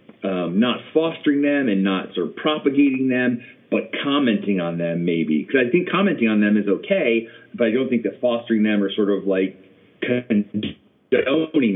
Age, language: 30-49, English